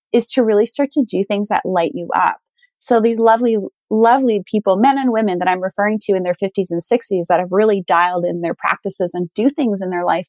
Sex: female